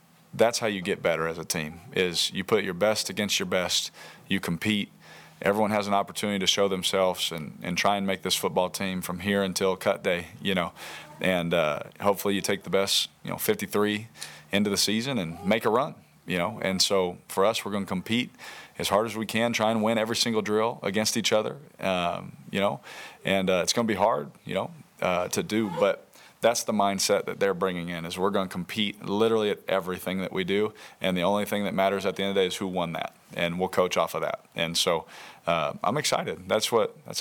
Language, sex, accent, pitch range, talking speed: English, male, American, 90-105 Hz, 235 wpm